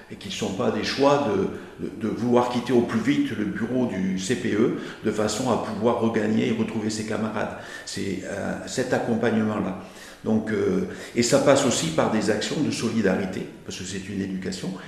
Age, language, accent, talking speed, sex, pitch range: 50-69, French, French, 195 wpm, male, 110-125 Hz